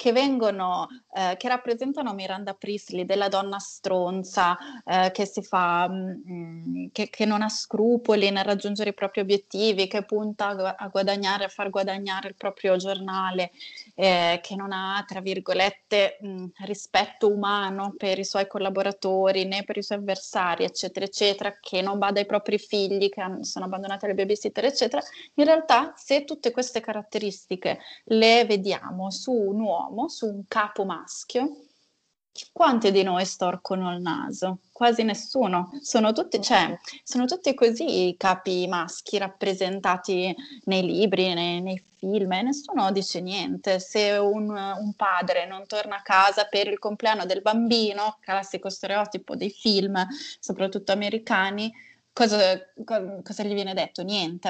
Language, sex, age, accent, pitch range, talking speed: Italian, female, 20-39, native, 190-215 Hz, 145 wpm